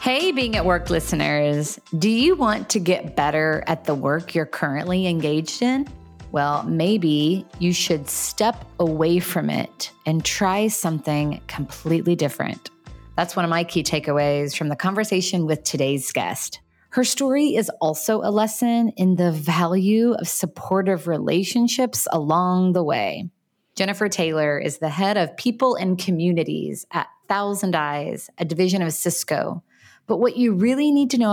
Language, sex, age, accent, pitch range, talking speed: English, female, 30-49, American, 155-210 Hz, 155 wpm